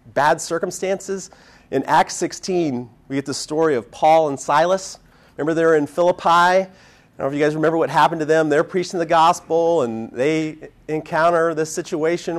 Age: 30-49